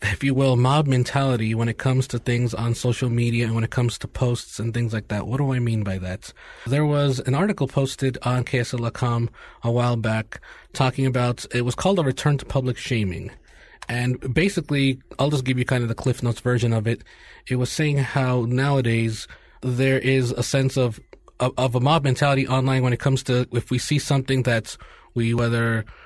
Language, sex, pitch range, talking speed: English, male, 120-135 Hz, 205 wpm